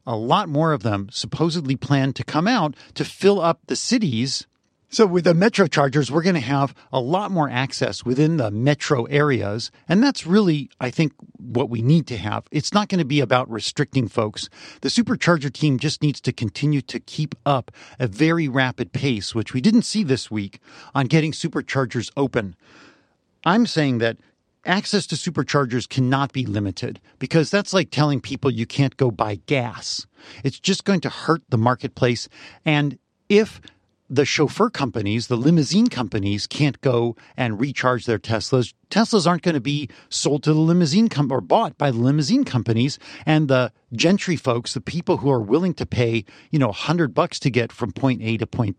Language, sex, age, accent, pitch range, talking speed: English, male, 50-69, American, 120-165 Hz, 190 wpm